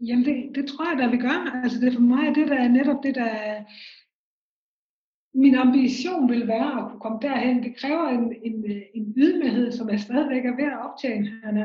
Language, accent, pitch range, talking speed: Danish, native, 245-290 Hz, 215 wpm